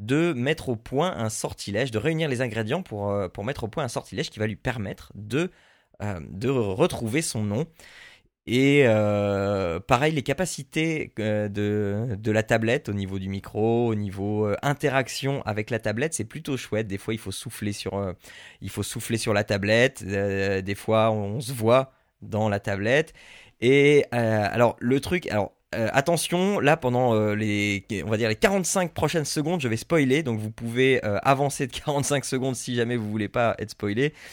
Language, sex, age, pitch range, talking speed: French, male, 20-39, 105-145 Hz, 185 wpm